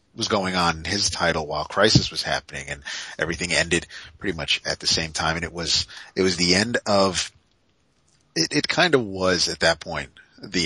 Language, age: English, 40-59